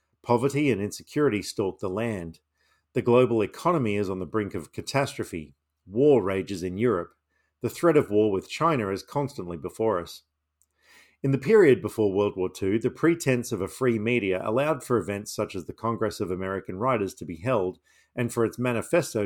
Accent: Australian